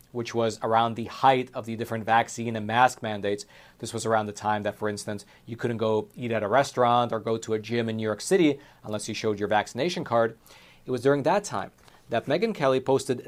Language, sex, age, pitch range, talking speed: English, male, 40-59, 110-135 Hz, 230 wpm